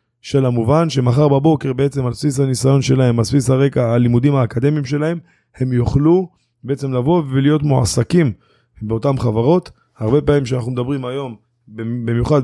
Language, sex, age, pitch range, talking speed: Hebrew, male, 20-39, 120-140 Hz, 140 wpm